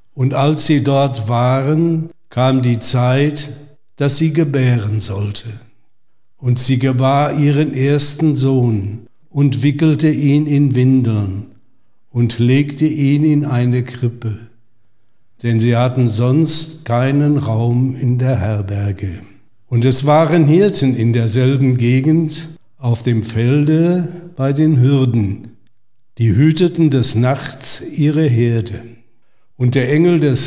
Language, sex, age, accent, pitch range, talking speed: German, male, 60-79, German, 120-150 Hz, 120 wpm